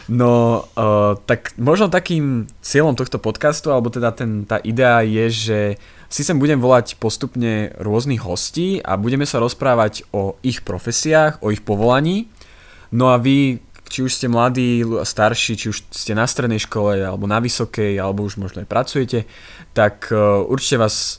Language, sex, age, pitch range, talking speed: Slovak, male, 20-39, 95-120 Hz, 160 wpm